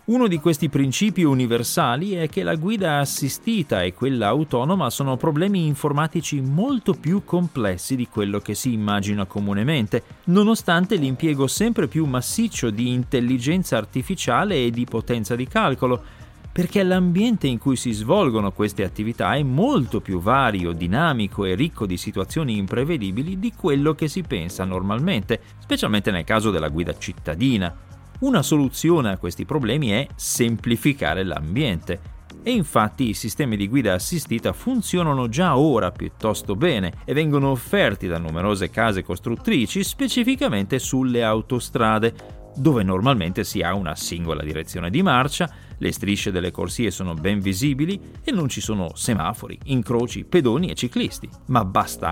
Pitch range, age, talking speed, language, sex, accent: 100-155 Hz, 40-59, 145 wpm, Italian, male, native